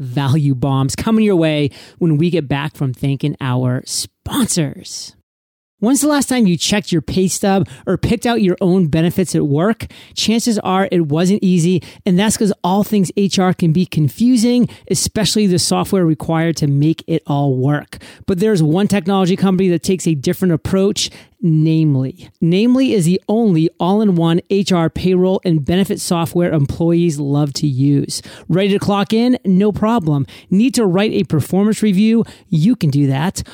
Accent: American